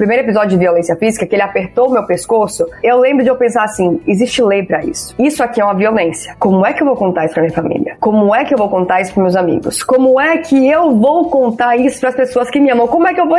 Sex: female